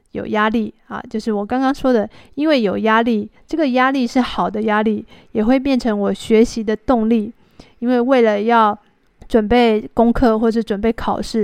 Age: 20-39